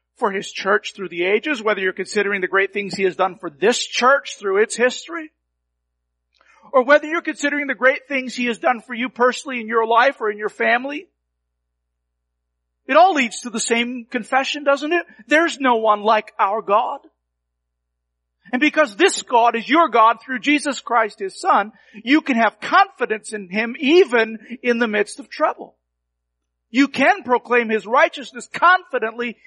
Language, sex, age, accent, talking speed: English, male, 50-69, American, 175 wpm